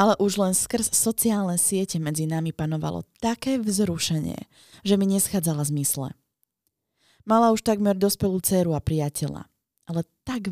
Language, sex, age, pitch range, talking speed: Slovak, female, 20-39, 145-195 Hz, 135 wpm